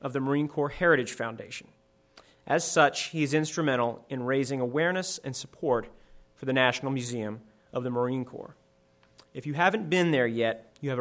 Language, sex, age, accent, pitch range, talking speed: English, male, 30-49, American, 110-140 Hz, 175 wpm